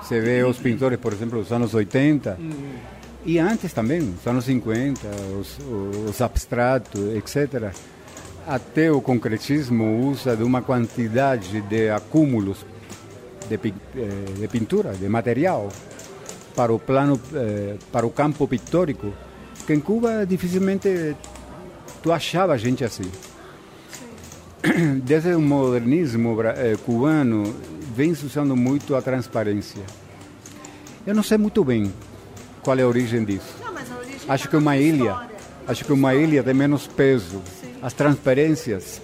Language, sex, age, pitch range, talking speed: Portuguese, male, 50-69, 105-145 Hz, 120 wpm